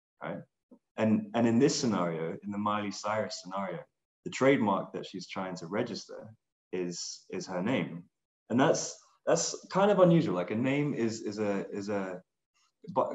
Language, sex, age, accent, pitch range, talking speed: English, male, 20-39, British, 90-110 Hz, 170 wpm